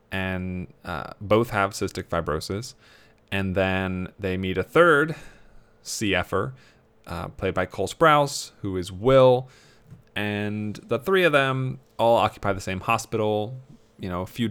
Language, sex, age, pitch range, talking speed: English, male, 30-49, 95-115 Hz, 145 wpm